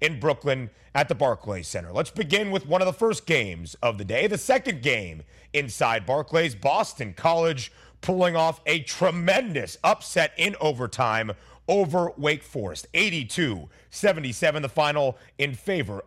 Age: 30-49